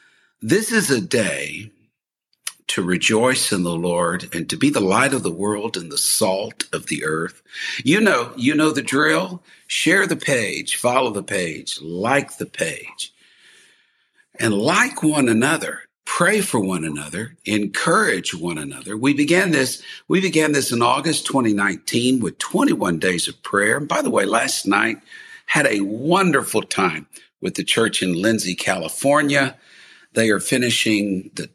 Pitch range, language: 95-140 Hz, English